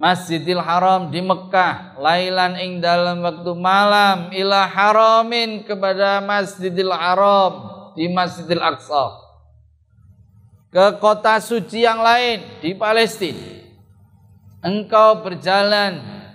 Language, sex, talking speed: Indonesian, male, 95 wpm